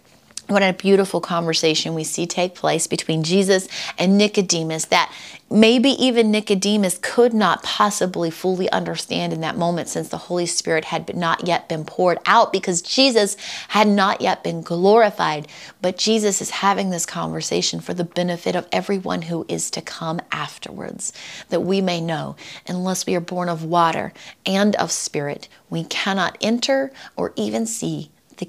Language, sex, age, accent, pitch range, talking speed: English, female, 30-49, American, 160-200 Hz, 160 wpm